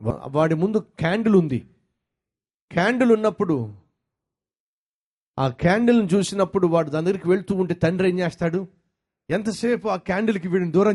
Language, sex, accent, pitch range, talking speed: Telugu, male, native, 155-220 Hz, 120 wpm